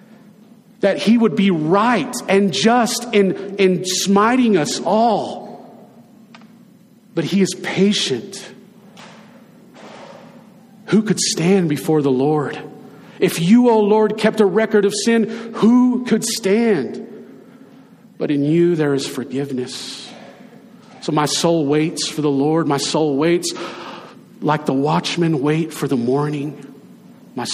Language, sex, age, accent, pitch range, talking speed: English, male, 40-59, American, 150-215 Hz, 125 wpm